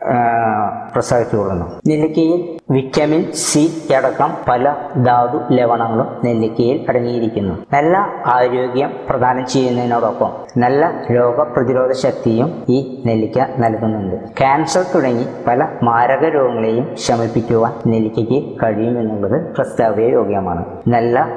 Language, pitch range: Malayalam, 115-140 Hz